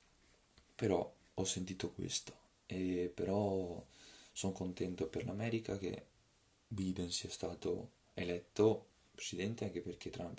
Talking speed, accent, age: 110 wpm, native, 20-39